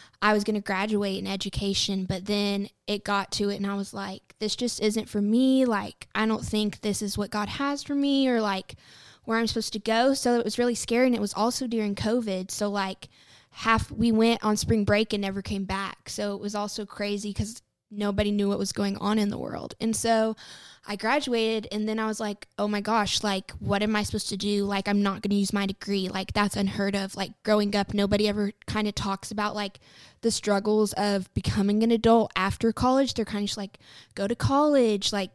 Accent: American